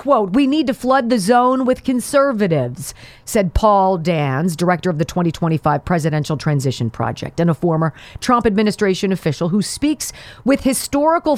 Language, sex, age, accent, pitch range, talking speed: English, female, 40-59, American, 170-240 Hz, 155 wpm